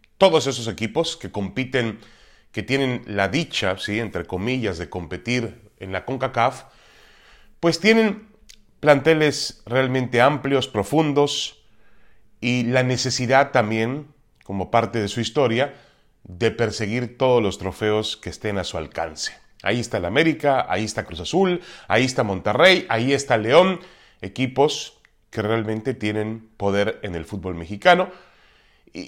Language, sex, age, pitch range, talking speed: Spanish, male, 30-49, 110-165 Hz, 135 wpm